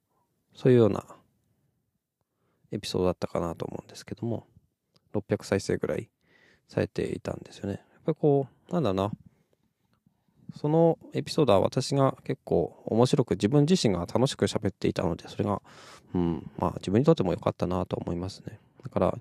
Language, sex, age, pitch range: Japanese, male, 20-39, 100-145 Hz